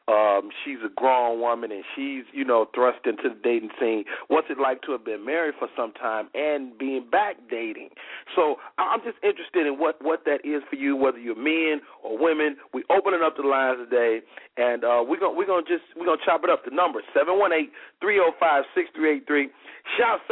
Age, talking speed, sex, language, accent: 40-59, 200 wpm, male, English, American